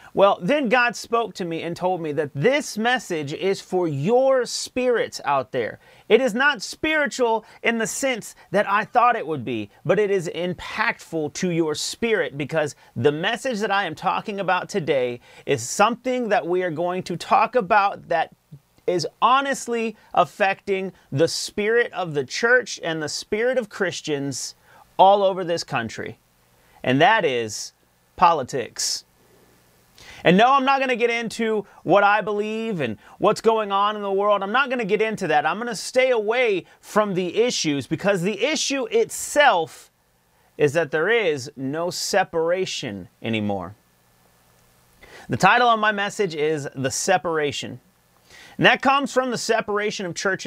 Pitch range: 155-230 Hz